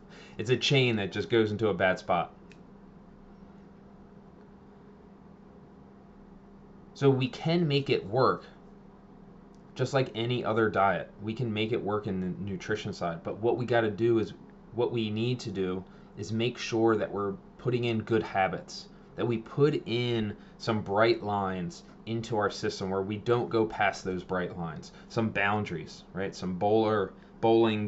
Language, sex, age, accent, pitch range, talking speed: English, male, 20-39, American, 105-145 Hz, 160 wpm